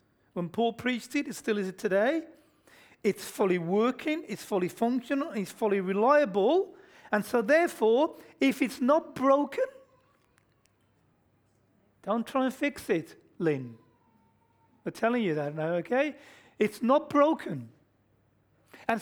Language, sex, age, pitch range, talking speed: English, male, 40-59, 190-295 Hz, 130 wpm